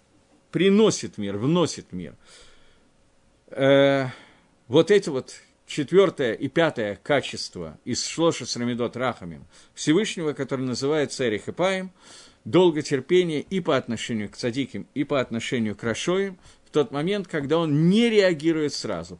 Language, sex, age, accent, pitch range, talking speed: Russian, male, 50-69, native, 125-180 Hz, 125 wpm